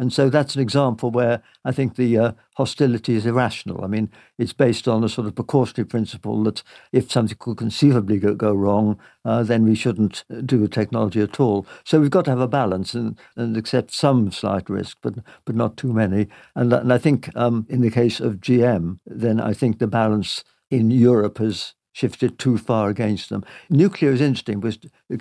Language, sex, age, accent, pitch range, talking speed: English, male, 60-79, British, 110-130 Hz, 205 wpm